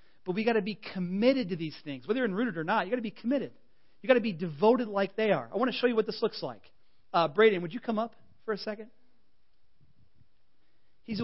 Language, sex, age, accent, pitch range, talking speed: English, male, 40-59, American, 155-225 Hz, 245 wpm